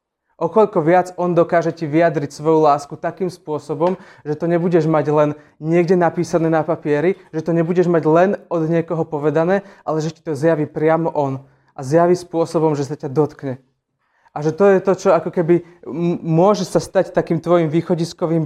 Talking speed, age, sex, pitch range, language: 180 wpm, 20-39, male, 155-180 Hz, Slovak